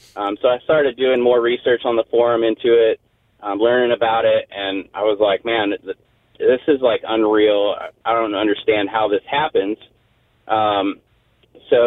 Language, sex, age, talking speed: English, male, 30-49, 175 wpm